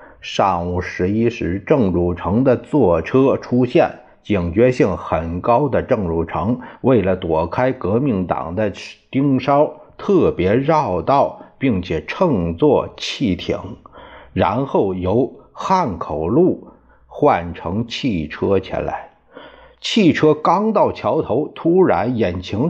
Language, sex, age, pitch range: Chinese, male, 50-69, 100-155 Hz